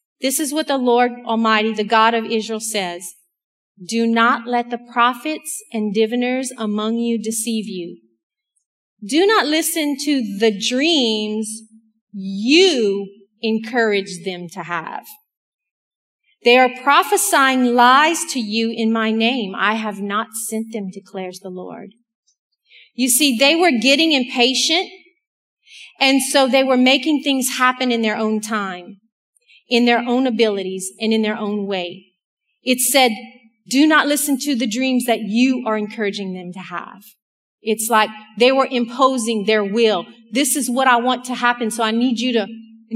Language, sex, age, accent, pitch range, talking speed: English, female, 40-59, American, 215-260 Hz, 155 wpm